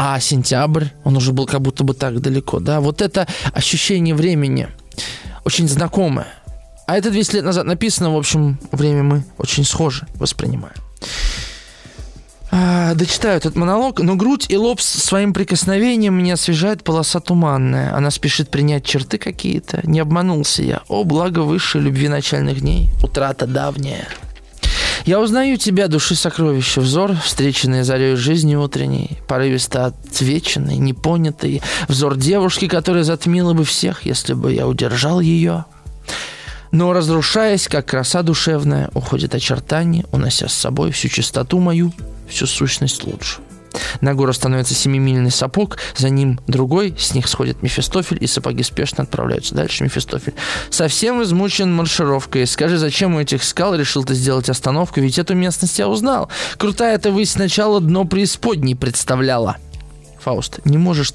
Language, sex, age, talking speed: Russian, male, 20-39, 140 wpm